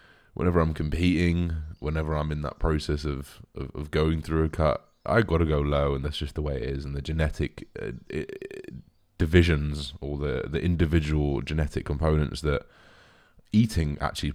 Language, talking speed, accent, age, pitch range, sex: English, 175 wpm, British, 20-39, 75-85 Hz, male